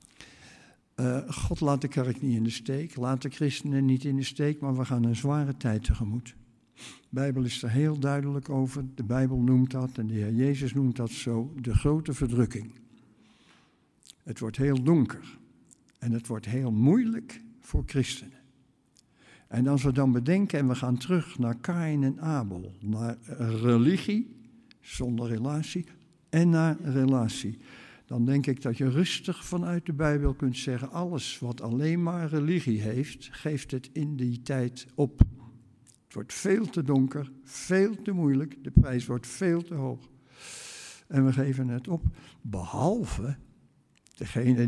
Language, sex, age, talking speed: Dutch, male, 60-79, 160 wpm